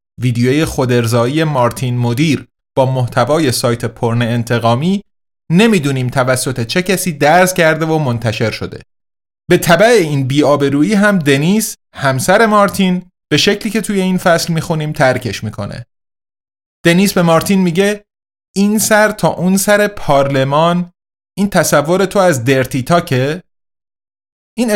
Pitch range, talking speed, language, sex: 125-175 Hz, 125 wpm, Persian, male